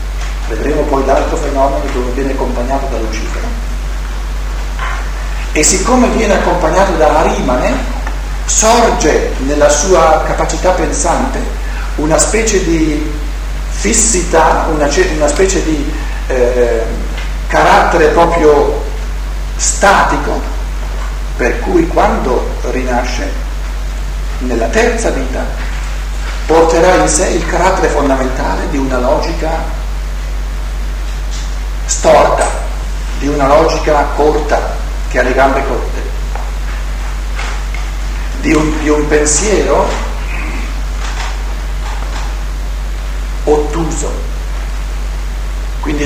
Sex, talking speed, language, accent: male, 85 wpm, Italian, native